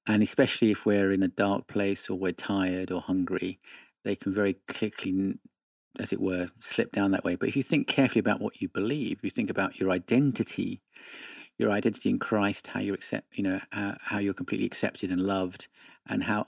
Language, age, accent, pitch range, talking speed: English, 40-59, British, 100-125 Hz, 210 wpm